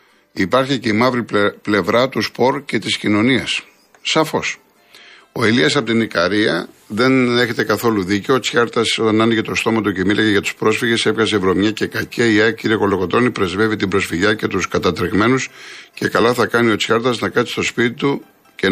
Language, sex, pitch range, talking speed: Greek, male, 100-120 Hz, 185 wpm